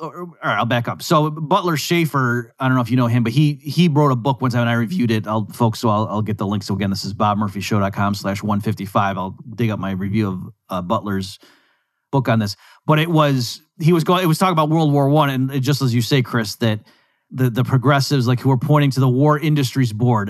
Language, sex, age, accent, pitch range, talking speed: English, male, 30-49, American, 120-150 Hz, 250 wpm